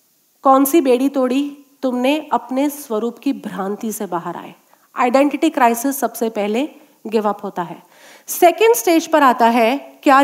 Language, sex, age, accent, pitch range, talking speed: Hindi, female, 40-59, native, 245-335 Hz, 145 wpm